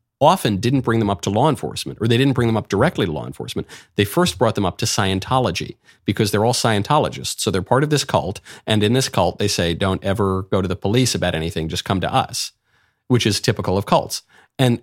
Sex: male